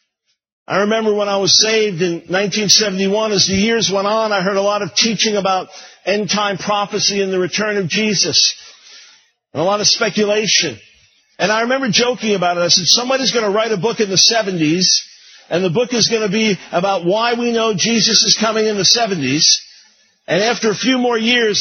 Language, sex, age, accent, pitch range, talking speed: English, male, 50-69, American, 200-235 Hz, 200 wpm